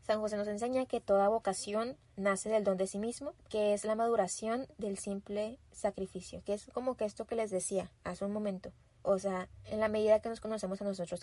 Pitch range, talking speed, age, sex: 185-220 Hz, 220 wpm, 20-39, female